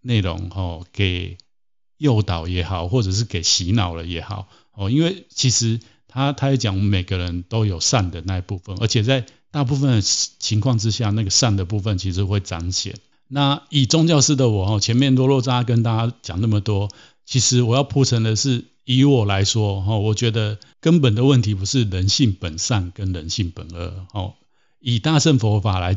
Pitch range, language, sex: 100-125 Hz, Chinese, male